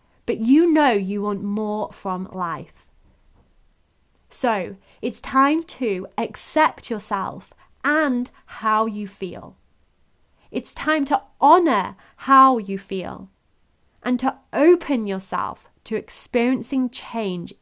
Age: 30-49